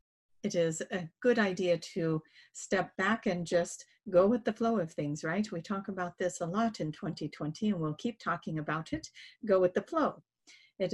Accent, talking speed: American, 195 wpm